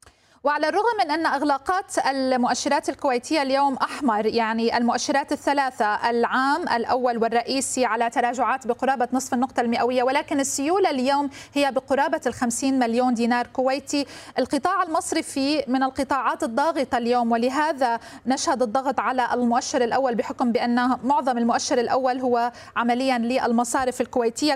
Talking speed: 125 wpm